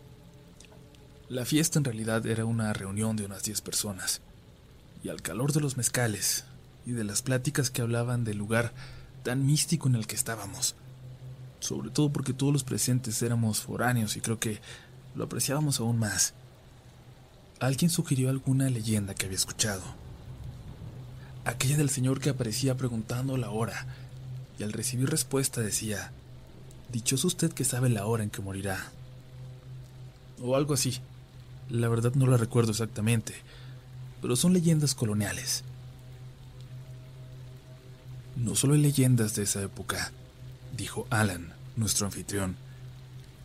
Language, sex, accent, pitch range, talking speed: Spanish, male, Mexican, 115-130 Hz, 135 wpm